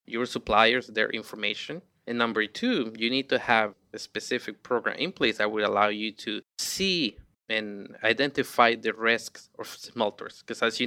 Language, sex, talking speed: English, male, 170 wpm